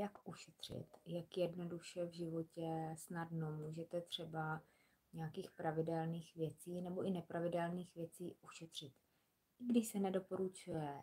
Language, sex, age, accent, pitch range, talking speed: Czech, female, 20-39, native, 160-195 Hz, 115 wpm